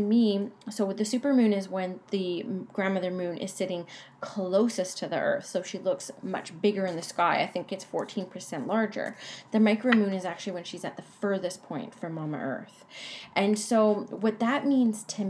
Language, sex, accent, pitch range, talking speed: English, female, American, 185-220 Hz, 200 wpm